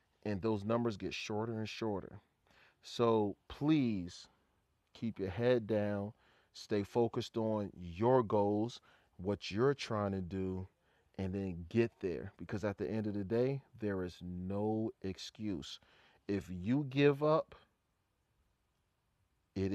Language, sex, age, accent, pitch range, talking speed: English, male, 30-49, American, 100-120 Hz, 130 wpm